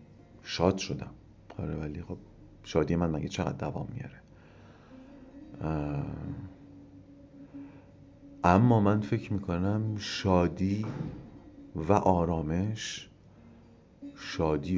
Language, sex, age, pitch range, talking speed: Persian, male, 40-59, 90-120 Hz, 75 wpm